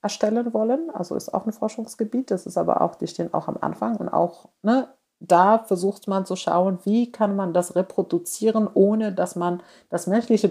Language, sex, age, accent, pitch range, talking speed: German, female, 40-59, German, 155-215 Hz, 195 wpm